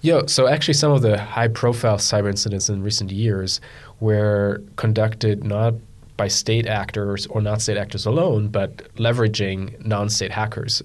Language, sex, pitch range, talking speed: English, male, 100-115 Hz, 150 wpm